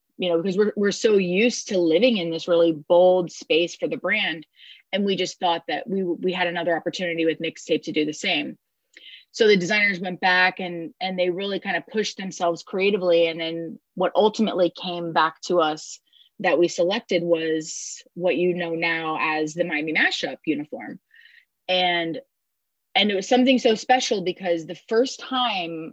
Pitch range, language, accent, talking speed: 165-195 Hz, English, American, 185 wpm